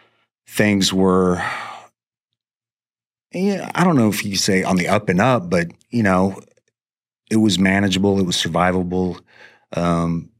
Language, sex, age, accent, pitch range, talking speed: English, male, 30-49, American, 85-95 Hz, 145 wpm